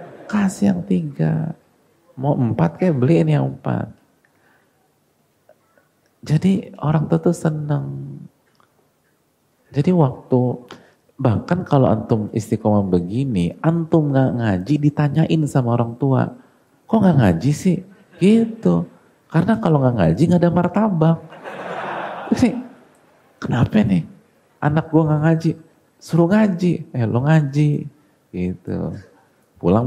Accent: native